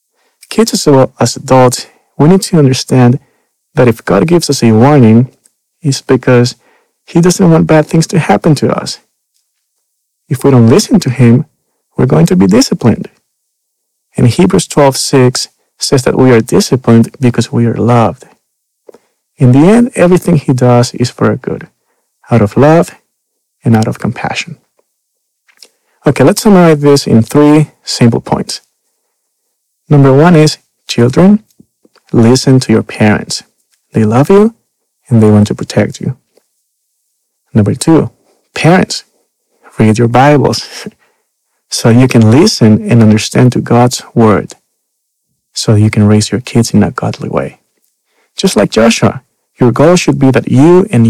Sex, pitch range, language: male, 115-165 Hz, English